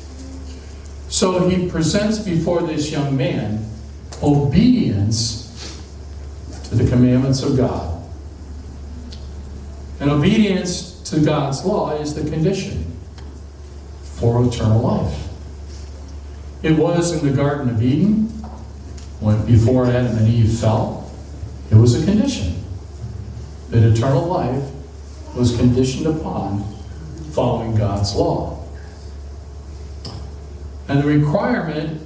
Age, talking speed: 50-69, 100 wpm